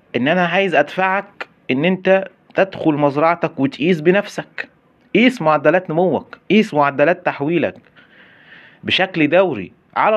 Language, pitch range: Arabic, 130-180 Hz